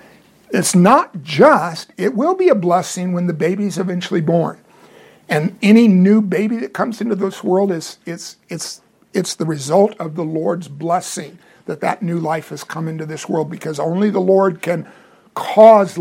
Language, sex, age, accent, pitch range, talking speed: English, male, 50-69, American, 165-205 Hz, 175 wpm